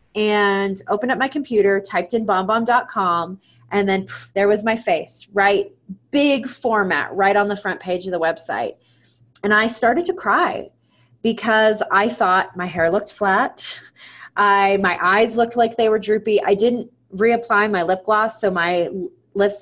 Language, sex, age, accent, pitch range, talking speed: English, female, 30-49, American, 185-225 Hz, 170 wpm